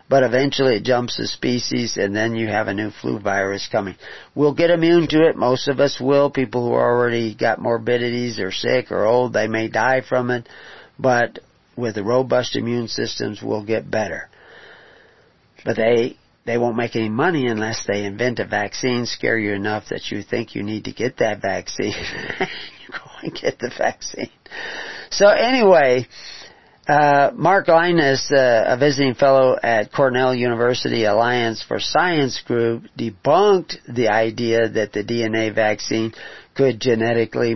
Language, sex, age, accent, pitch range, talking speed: English, male, 50-69, American, 115-165 Hz, 165 wpm